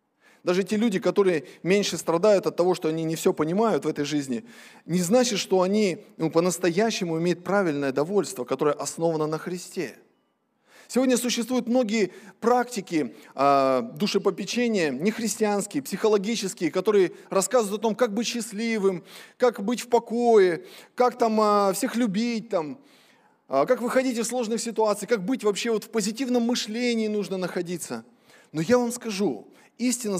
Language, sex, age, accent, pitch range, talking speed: Russian, male, 20-39, native, 180-230 Hz, 150 wpm